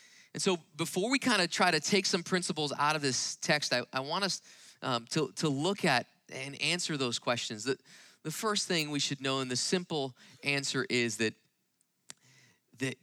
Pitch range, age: 130-170 Hz, 30-49